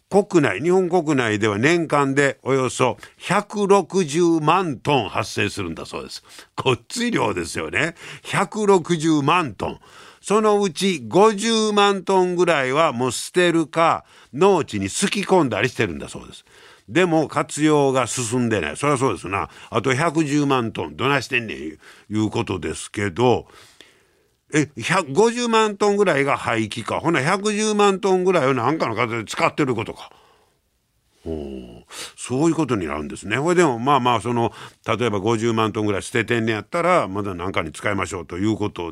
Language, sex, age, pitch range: Japanese, male, 50-69, 110-175 Hz